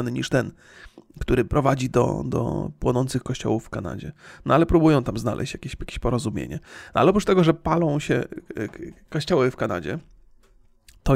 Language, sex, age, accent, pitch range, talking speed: Polish, male, 30-49, native, 115-140 Hz, 155 wpm